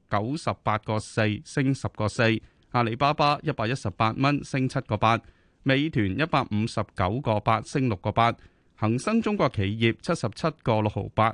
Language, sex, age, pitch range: Chinese, male, 30-49, 105-140 Hz